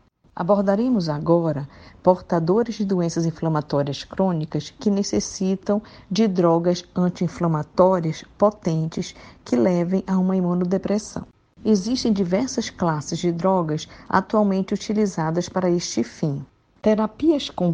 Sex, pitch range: female, 165-205 Hz